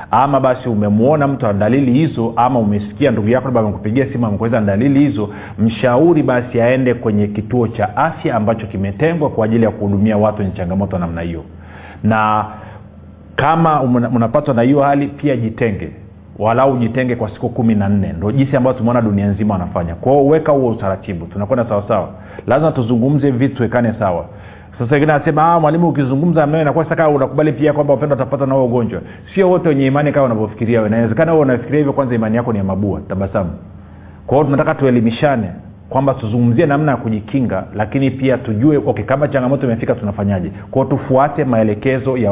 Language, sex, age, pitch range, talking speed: Swahili, male, 40-59, 105-135 Hz, 180 wpm